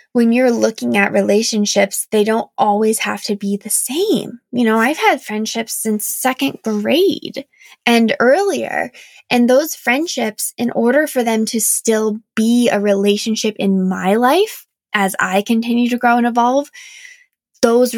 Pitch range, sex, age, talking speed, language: 205-260 Hz, female, 10-29, 155 wpm, English